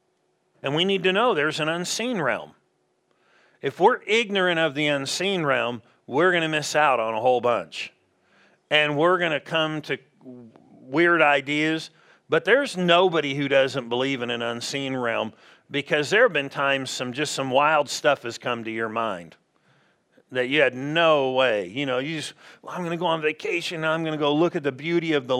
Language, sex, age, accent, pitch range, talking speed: English, male, 40-59, American, 135-170 Hz, 195 wpm